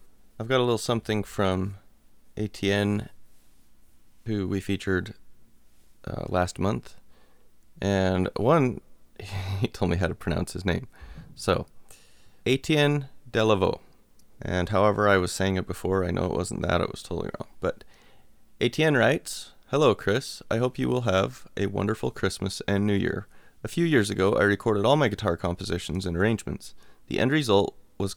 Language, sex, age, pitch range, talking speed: English, male, 30-49, 95-110 Hz, 160 wpm